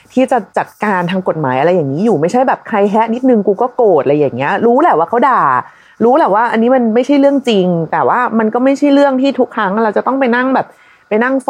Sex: female